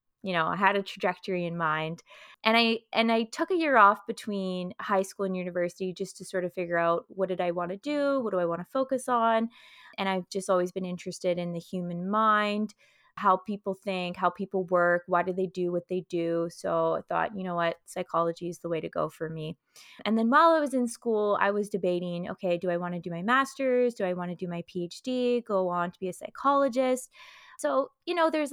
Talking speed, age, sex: 235 wpm, 20-39, female